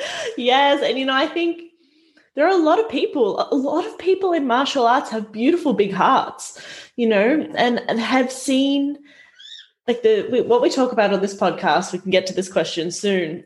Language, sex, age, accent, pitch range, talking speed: English, female, 20-39, Australian, 185-255 Hz, 200 wpm